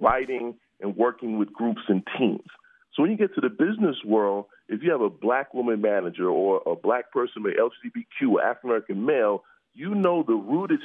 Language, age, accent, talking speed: English, 40-59, American, 195 wpm